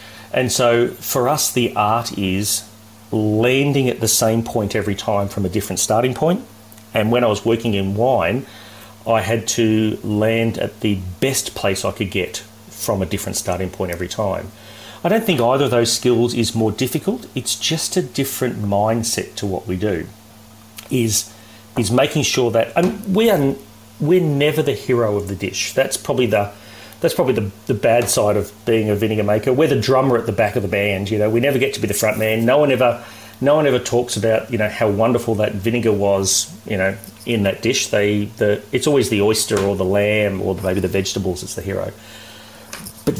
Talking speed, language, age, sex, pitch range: 205 wpm, English, 40-59, male, 105-120 Hz